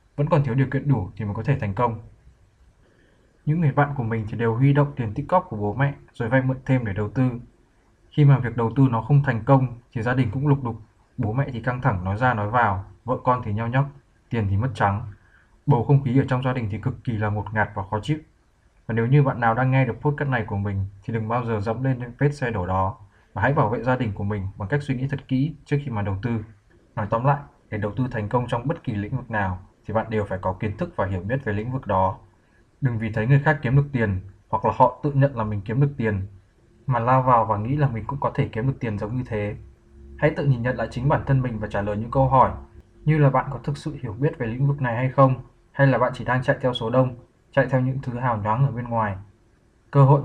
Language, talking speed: Vietnamese, 280 wpm